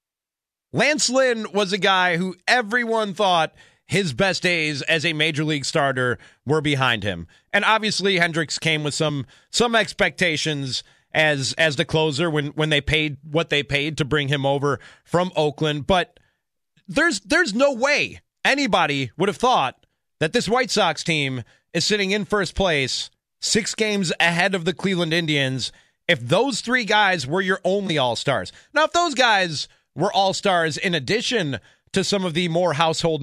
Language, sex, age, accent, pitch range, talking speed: English, male, 30-49, American, 150-205 Hz, 165 wpm